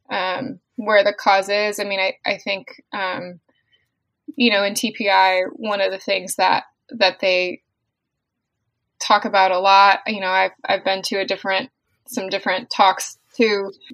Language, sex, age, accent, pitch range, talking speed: English, female, 20-39, American, 185-215 Hz, 165 wpm